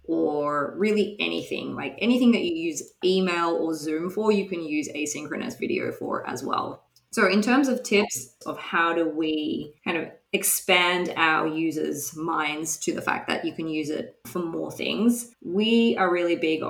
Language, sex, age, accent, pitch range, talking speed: English, female, 20-39, Australian, 155-190 Hz, 180 wpm